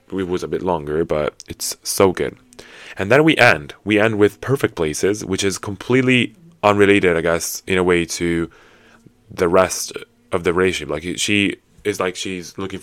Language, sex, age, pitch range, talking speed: English, male, 20-39, 85-105 Hz, 185 wpm